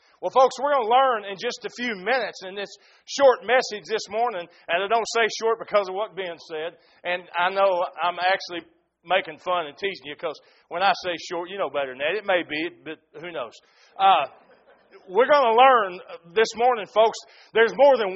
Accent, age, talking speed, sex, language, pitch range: American, 40-59, 210 wpm, male, English, 195-275 Hz